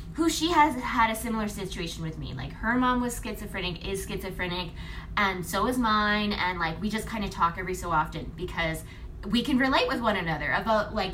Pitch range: 195-250 Hz